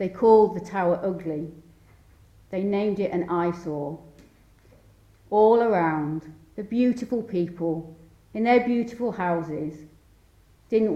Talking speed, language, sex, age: 110 wpm, English, female, 40-59